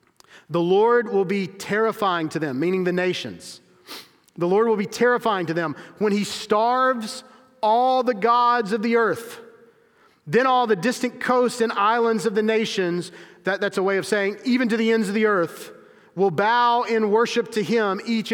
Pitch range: 205-245 Hz